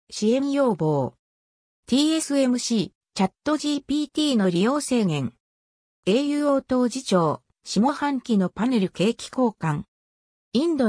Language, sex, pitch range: Japanese, female, 175-260 Hz